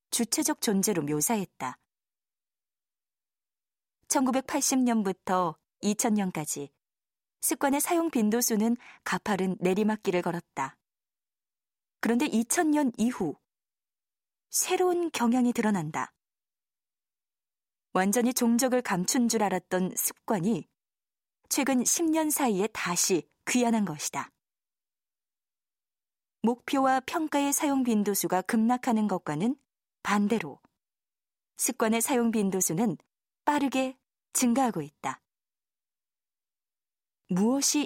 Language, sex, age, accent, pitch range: Korean, female, 20-39, native, 195-265 Hz